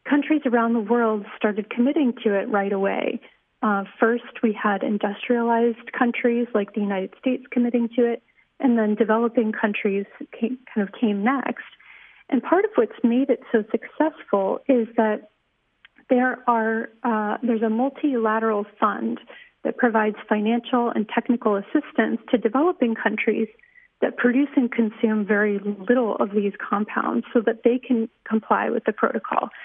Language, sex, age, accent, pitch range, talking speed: English, female, 40-59, American, 215-250 Hz, 150 wpm